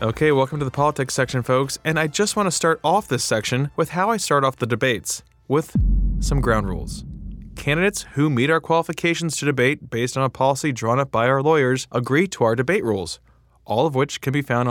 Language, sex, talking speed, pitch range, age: English, male, 220 wpm, 110-150 Hz, 20-39